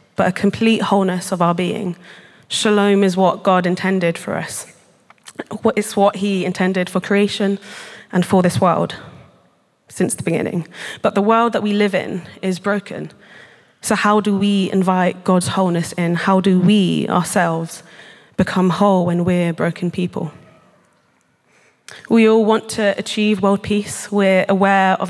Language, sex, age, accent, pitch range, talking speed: English, female, 20-39, British, 180-205 Hz, 155 wpm